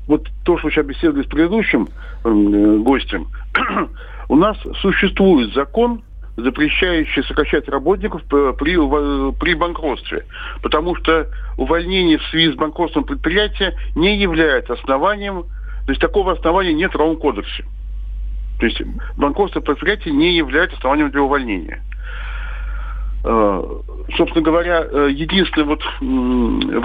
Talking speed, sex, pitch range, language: 115 wpm, male, 145-195 Hz, Russian